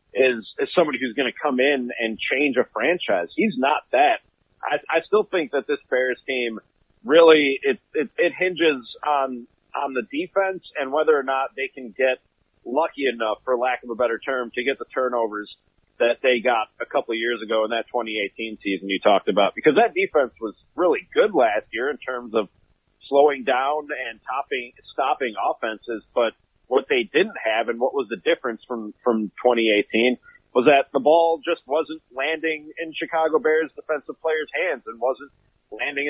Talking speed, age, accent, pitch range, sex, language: 185 wpm, 40-59, American, 120-155 Hz, male, English